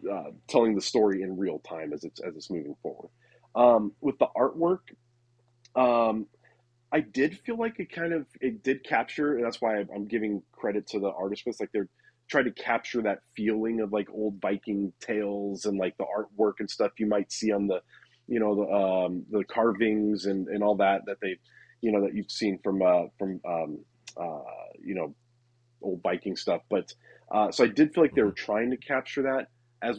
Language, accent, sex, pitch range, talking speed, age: English, American, male, 100-120 Hz, 205 wpm, 30-49